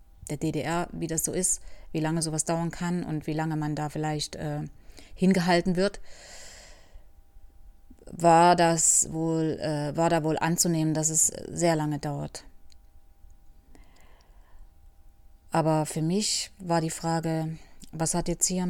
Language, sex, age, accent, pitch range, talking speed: German, female, 30-49, German, 145-170 Hz, 130 wpm